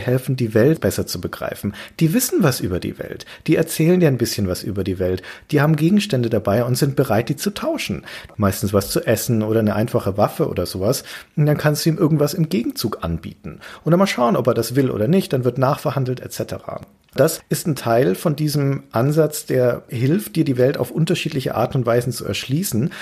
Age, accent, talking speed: 40-59, German, 215 wpm